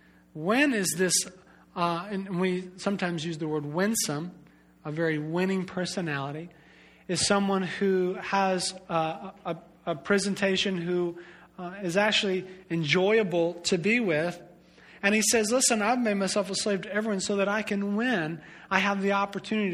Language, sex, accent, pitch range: English, male, American, 155-195 Hz